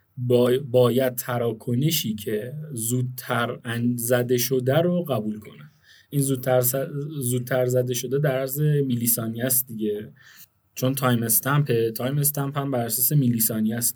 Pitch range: 120-135 Hz